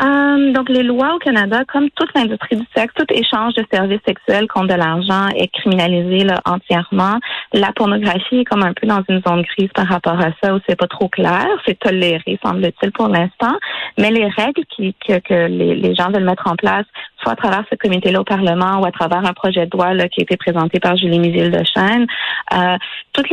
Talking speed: 205 wpm